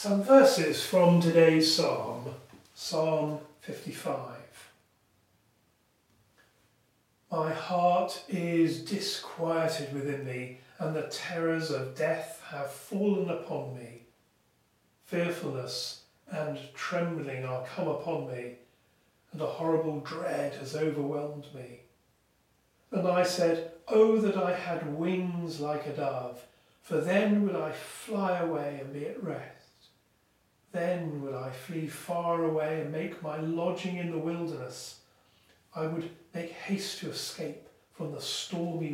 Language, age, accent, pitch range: English, 40-59, British, 140-175 Hz